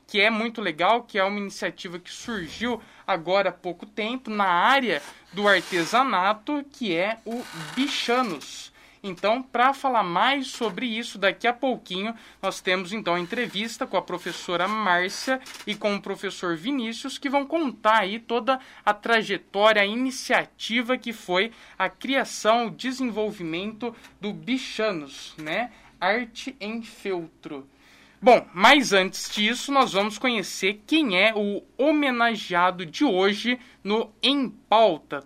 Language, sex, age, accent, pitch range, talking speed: Portuguese, male, 20-39, Brazilian, 195-255 Hz, 140 wpm